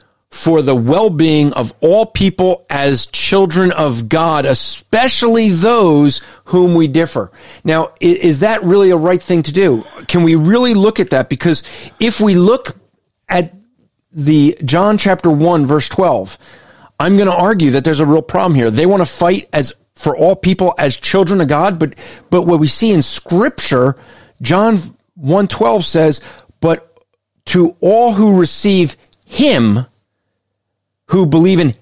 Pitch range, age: 145-195 Hz, 40-59